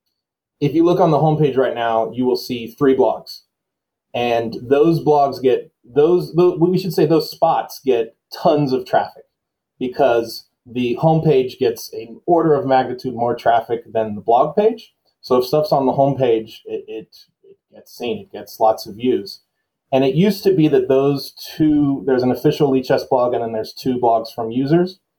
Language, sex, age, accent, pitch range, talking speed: English, male, 30-49, American, 120-170 Hz, 185 wpm